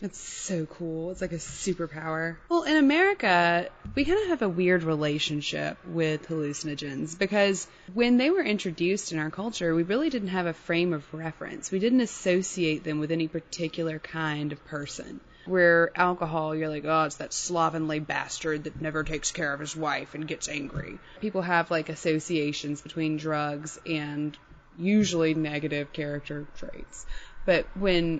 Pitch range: 155-200 Hz